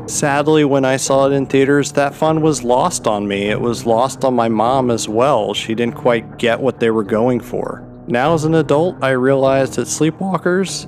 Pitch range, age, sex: 120-155 Hz, 40-59, male